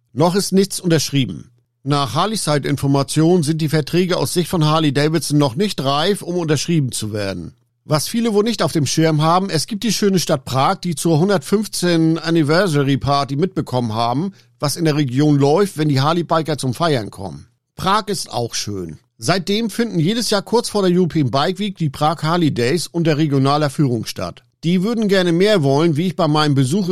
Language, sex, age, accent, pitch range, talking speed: German, male, 50-69, German, 140-180 Hz, 185 wpm